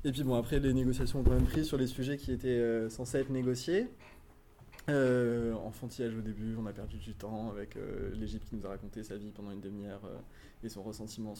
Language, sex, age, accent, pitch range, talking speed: French, male, 20-39, French, 110-125 Hz, 230 wpm